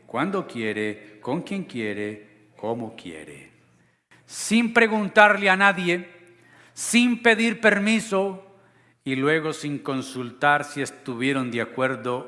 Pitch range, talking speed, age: 130-195 Hz, 105 wpm, 50-69